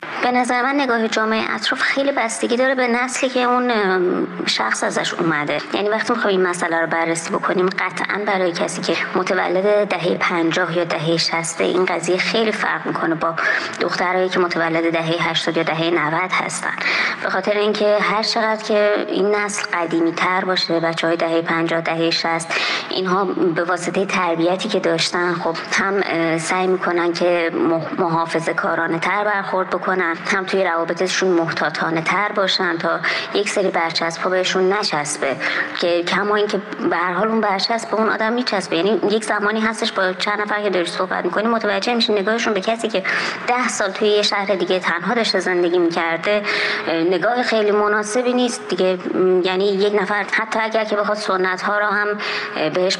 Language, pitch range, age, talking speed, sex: Persian, 175-210 Hz, 30-49, 165 wpm, male